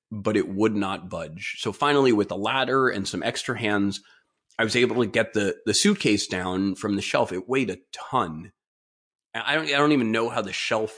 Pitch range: 105-145 Hz